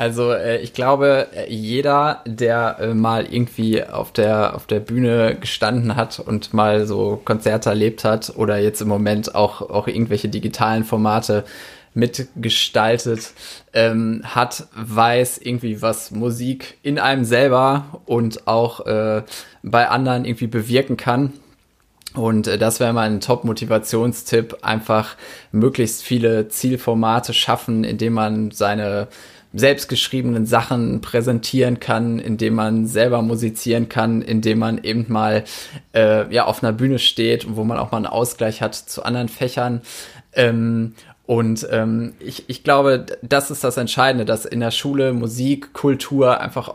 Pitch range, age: 110-125 Hz, 20-39